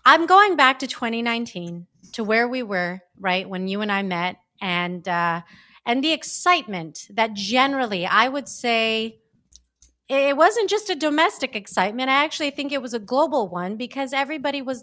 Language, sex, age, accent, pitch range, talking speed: English, female, 30-49, American, 195-275 Hz, 170 wpm